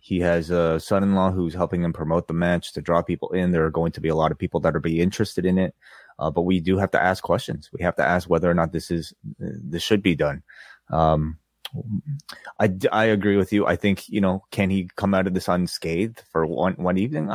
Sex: male